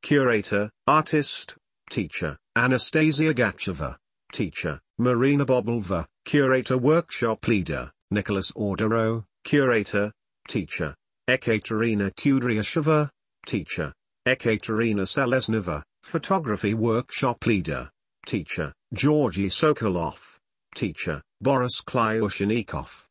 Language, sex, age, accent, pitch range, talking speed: English, male, 50-69, British, 105-140 Hz, 75 wpm